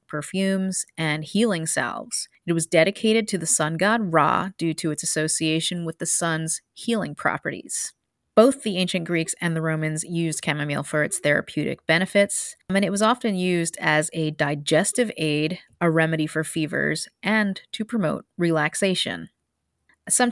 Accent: American